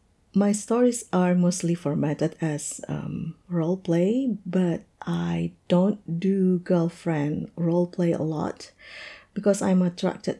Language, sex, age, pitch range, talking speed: English, female, 50-69, 150-190 Hz, 110 wpm